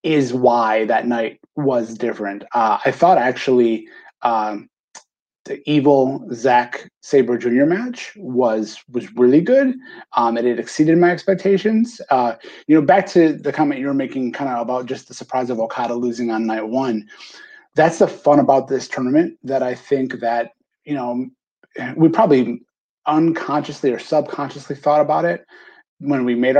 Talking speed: 160 wpm